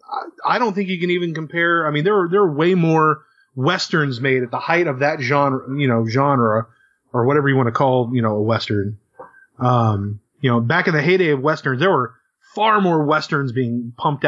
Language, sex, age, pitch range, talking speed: English, male, 30-49, 120-160 Hz, 220 wpm